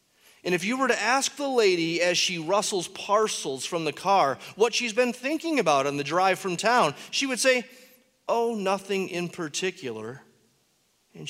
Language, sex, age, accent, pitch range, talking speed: English, male, 40-59, American, 130-175 Hz, 175 wpm